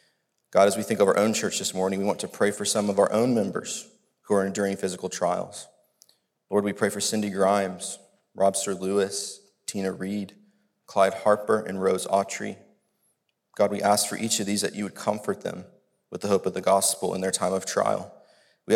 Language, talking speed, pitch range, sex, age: English, 205 wpm, 100-110 Hz, male, 30-49